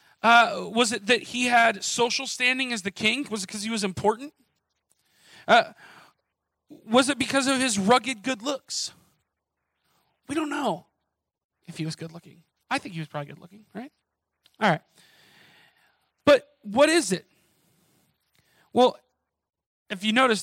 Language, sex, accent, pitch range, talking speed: English, male, American, 185-245 Hz, 155 wpm